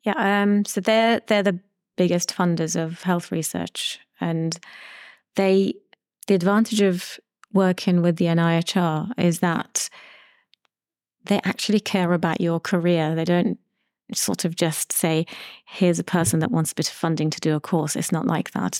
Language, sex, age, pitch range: English, female, 30-49, 165-195 Hz